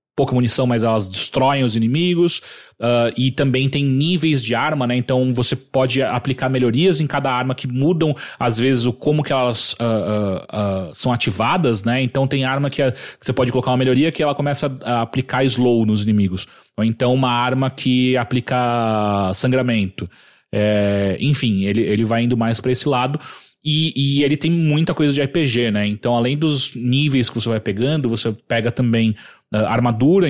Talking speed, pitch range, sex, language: 185 wpm, 115-140 Hz, male, English